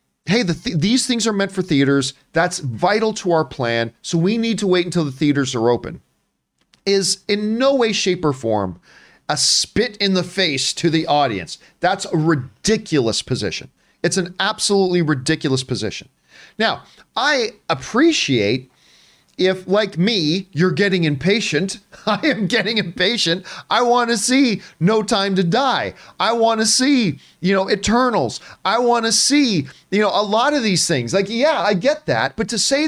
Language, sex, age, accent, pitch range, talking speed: English, male, 40-59, American, 145-205 Hz, 170 wpm